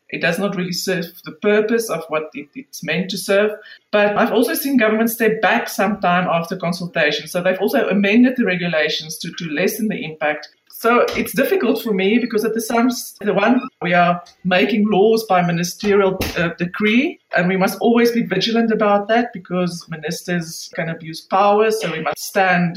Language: English